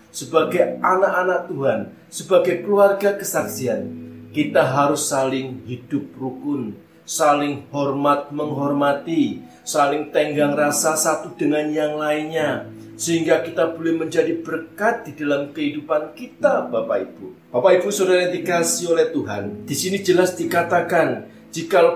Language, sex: Indonesian, male